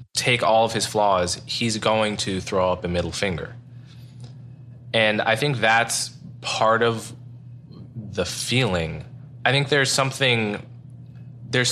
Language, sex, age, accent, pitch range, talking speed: English, male, 20-39, American, 100-125 Hz, 135 wpm